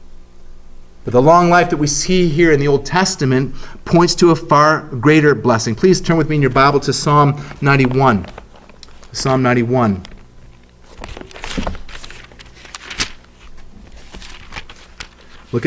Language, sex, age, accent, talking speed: English, male, 30-49, American, 120 wpm